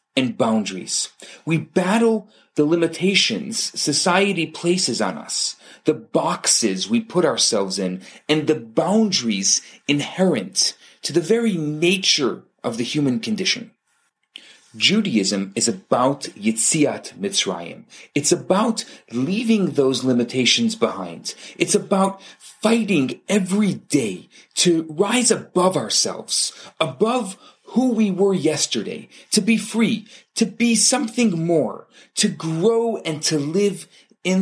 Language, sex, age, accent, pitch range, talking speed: English, male, 40-59, Canadian, 145-215 Hz, 115 wpm